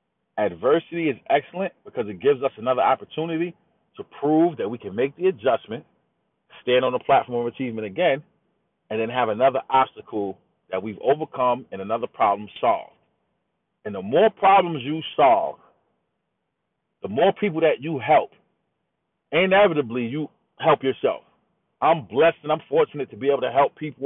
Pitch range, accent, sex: 125-155 Hz, American, male